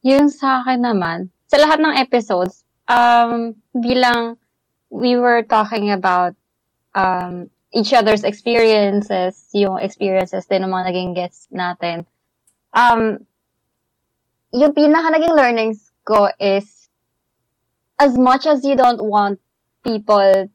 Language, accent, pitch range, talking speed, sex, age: English, Filipino, 185-235 Hz, 115 wpm, female, 20-39